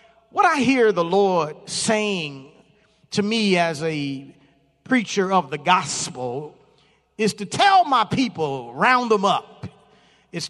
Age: 40-59